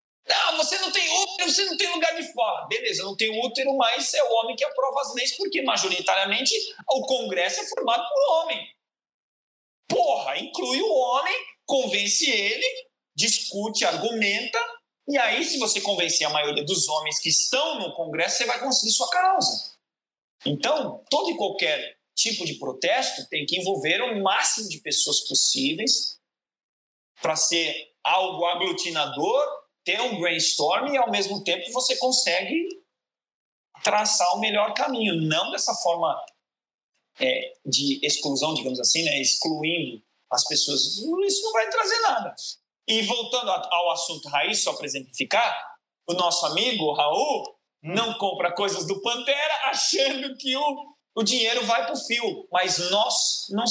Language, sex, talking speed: Portuguese, male, 150 wpm